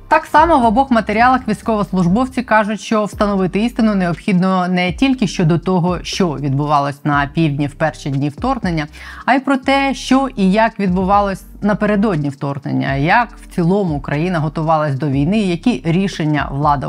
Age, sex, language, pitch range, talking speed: 20-39, female, Ukrainian, 150-185 Hz, 155 wpm